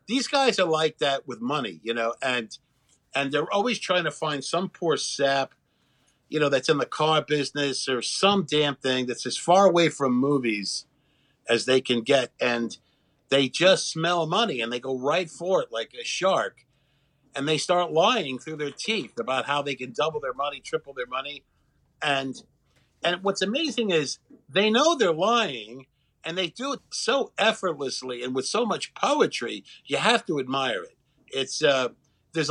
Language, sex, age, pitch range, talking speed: English, male, 50-69, 135-185 Hz, 185 wpm